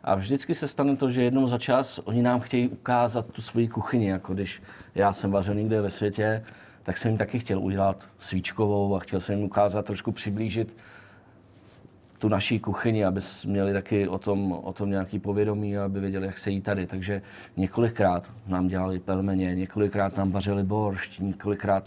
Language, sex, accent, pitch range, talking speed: Czech, male, native, 95-110 Hz, 180 wpm